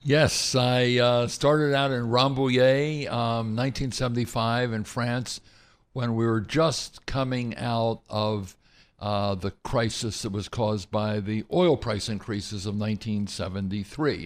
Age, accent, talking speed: 60-79, American, 130 wpm